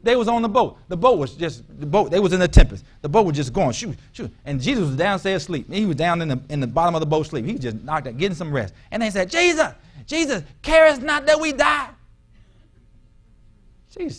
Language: English